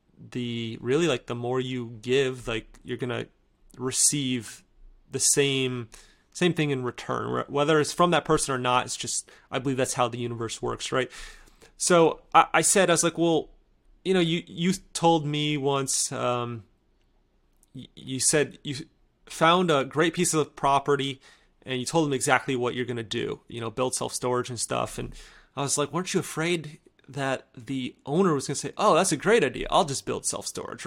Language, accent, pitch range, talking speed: English, American, 125-165 Hz, 190 wpm